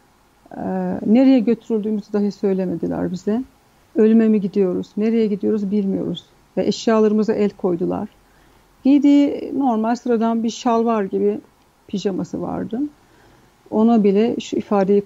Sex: female